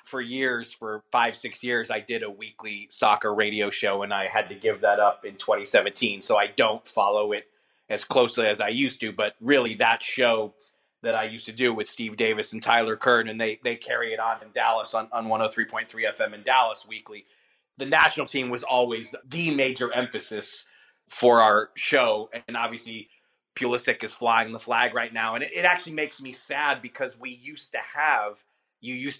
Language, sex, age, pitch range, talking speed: English, male, 30-49, 110-130 Hz, 200 wpm